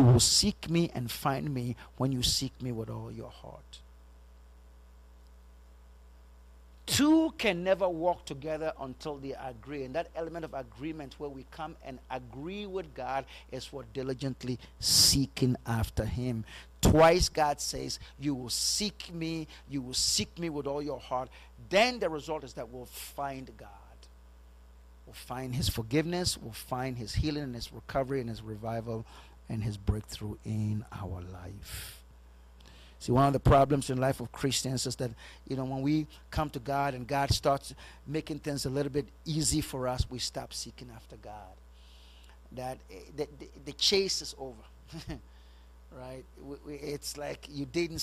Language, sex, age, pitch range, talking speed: English, male, 50-69, 100-145 Hz, 165 wpm